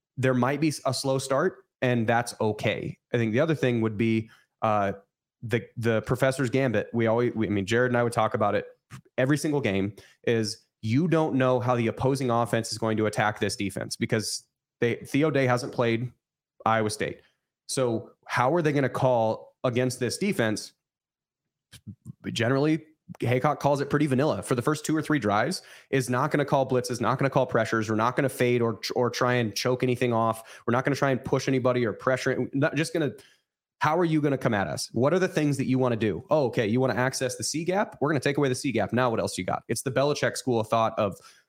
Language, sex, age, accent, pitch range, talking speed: English, male, 30-49, American, 115-145 Hz, 235 wpm